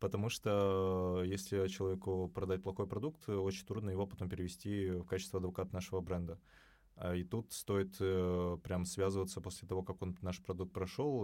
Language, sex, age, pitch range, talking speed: Russian, male, 20-39, 95-110 Hz, 155 wpm